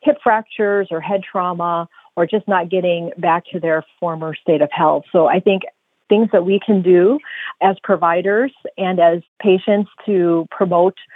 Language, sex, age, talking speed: English, female, 40-59, 165 wpm